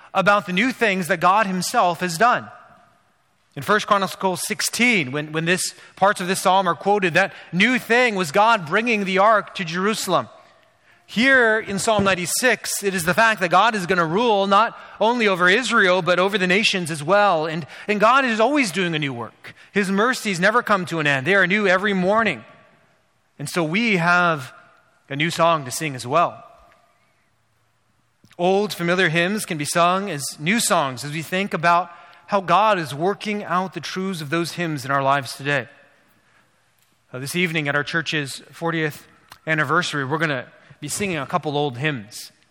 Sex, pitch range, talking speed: male, 150-195 Hz, 185 wpm